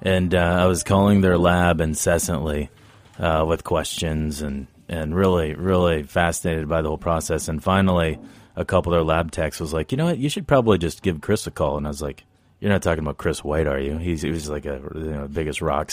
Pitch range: 80-90 Hz